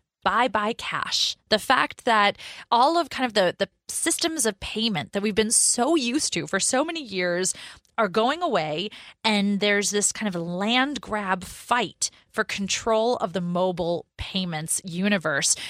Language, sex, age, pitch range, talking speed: English, female, 30-49, 185-240 Hz, 165 wpm